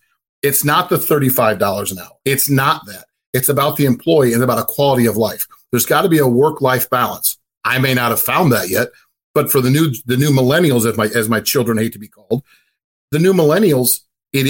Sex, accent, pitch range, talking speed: male, American, 125-150 Hz, 225 wpm